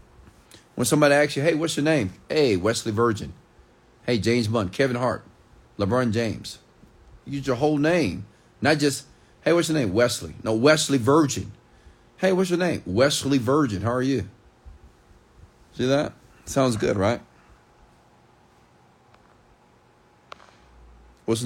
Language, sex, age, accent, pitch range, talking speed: English, male, 40-59, American, 85-135 Hz, 130 wpm